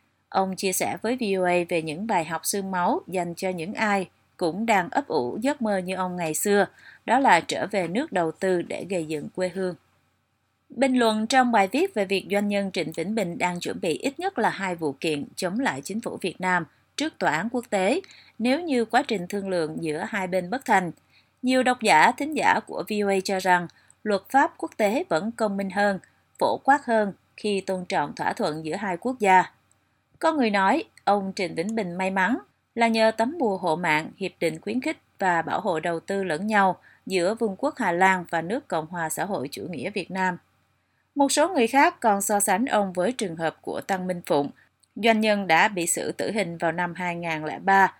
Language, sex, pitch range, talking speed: Vietnamese, female, 175-230 Hz, 220 wpm